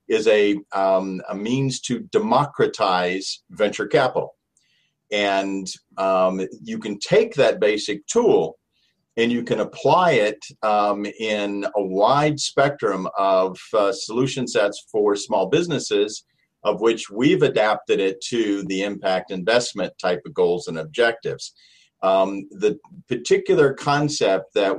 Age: 50-69